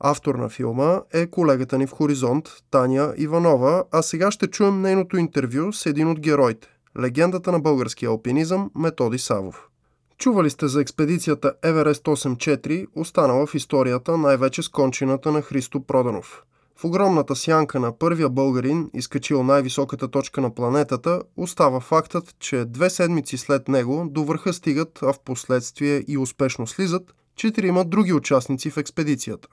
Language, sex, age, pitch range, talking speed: Bulgarian, male, 20-39, 135-170 Hz, 150 wpm